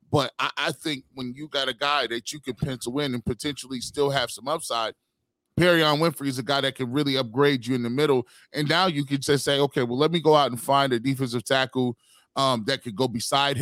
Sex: male